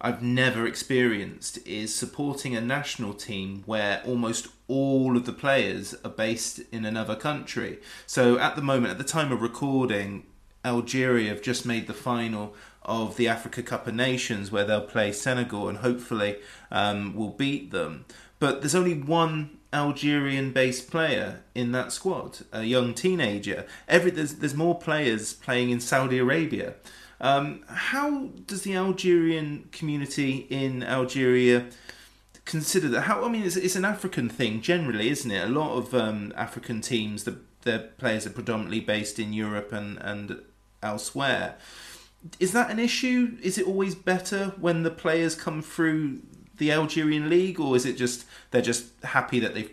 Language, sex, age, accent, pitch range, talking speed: English, male, 30-49, British, 110-155 Hz, 160 wpm